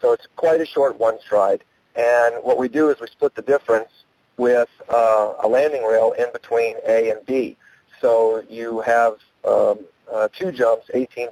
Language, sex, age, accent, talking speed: English, male, 50-69, American, 180 wpm